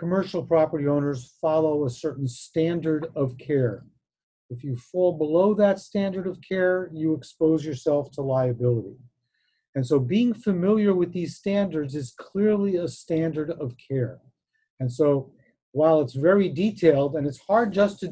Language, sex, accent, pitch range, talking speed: English, male, American, 135-180 Hz, 150 wpm